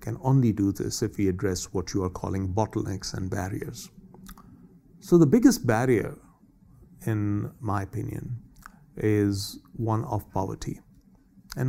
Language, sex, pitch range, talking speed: English, male, 95-120 Hz, 135 wpm